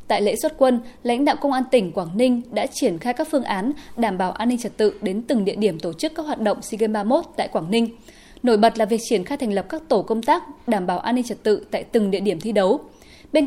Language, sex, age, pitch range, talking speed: Vietnamese, female, 20-39, 200-260 Hz, 275 wpm